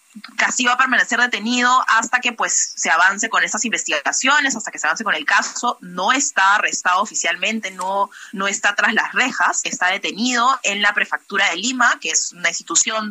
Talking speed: 190 wpm